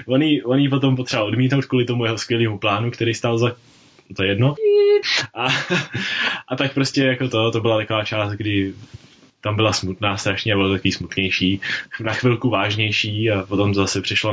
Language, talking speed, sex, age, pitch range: Czech, 170 wpm, male, 20-39, 110-140 Hz